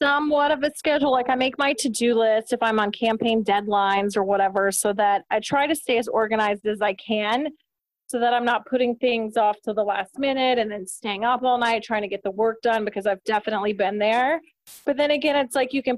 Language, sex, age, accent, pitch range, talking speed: English, female, 30-49, American, 225-285 Hz, 240 wpm